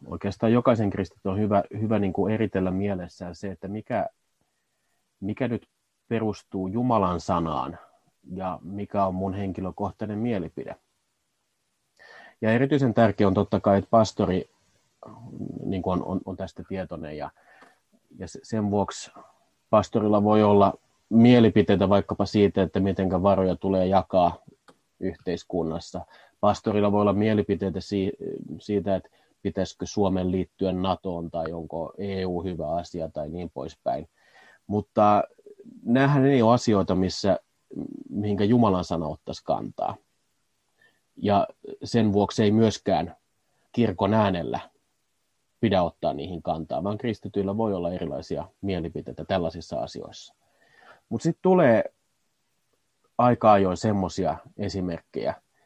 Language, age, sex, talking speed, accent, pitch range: Finnish, 30-49, male, 115 wpm, native, 95-110 Hz